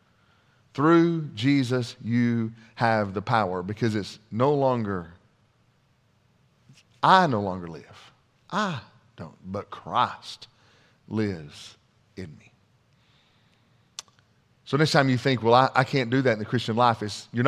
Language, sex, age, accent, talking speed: English, male, 40-59, American, 125 wpm